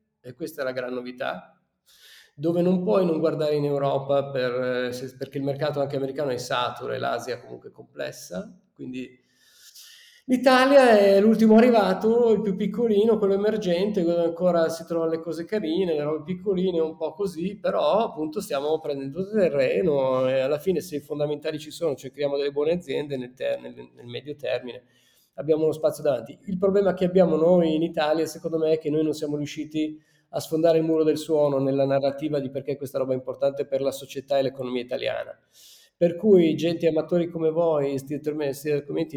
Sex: male